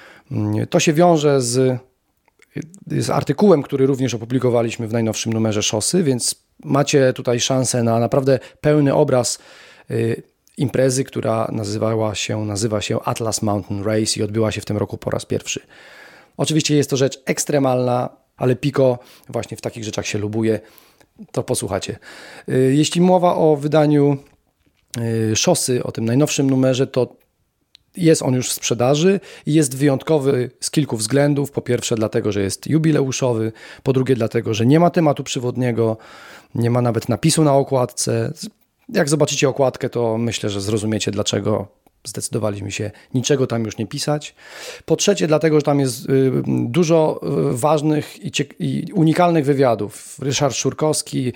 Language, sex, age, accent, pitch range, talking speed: Polish, male, 40-59, native, 115-145 Hz, 145 wpm